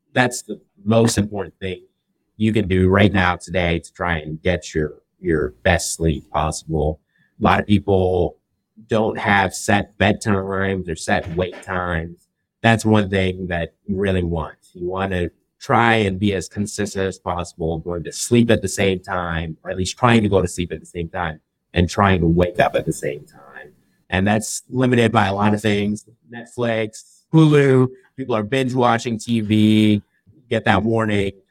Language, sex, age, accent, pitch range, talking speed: English, male, 50-69, American, 90-115 Hz, 180 wpm